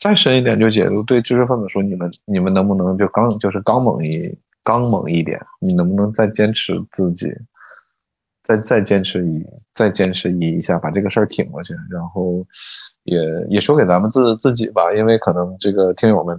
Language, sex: Chinese, male